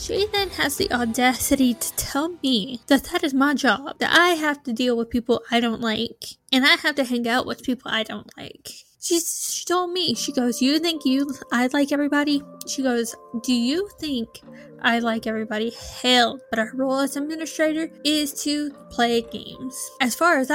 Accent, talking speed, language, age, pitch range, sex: American, 195 wpm, English, 10-29, 235-285 Hz, female